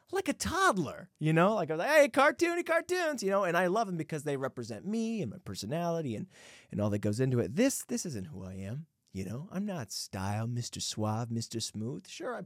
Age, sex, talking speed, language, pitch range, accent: 30-49, male, 235 wpm, English, 115-195 Hz, American